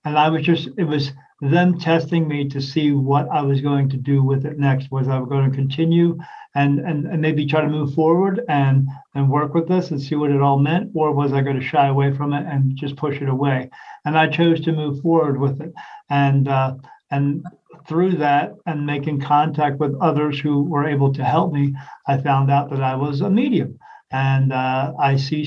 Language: English